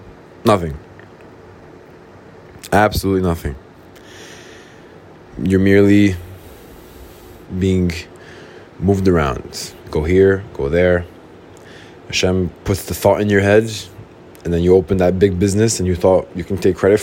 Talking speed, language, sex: 115 wpm, English, male